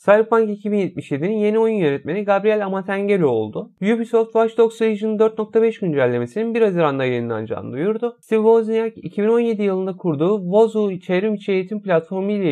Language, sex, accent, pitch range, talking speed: Turkish, male, native, 170-225 Hz, 135 wpm